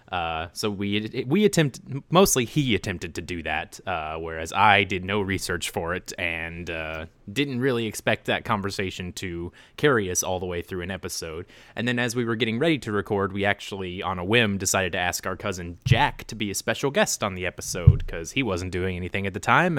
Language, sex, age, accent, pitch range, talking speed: English, male, 20-39, American, 95-125 Hz, 215 wpm